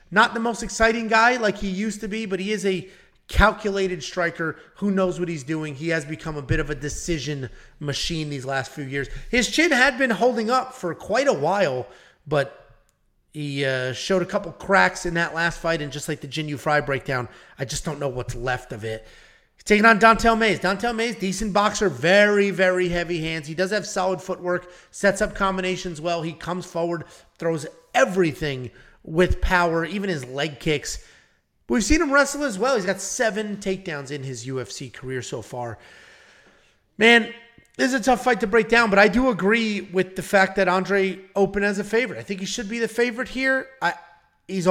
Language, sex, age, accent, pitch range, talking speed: English, male, 30-49, American, 160-215 Hz, 205 wpm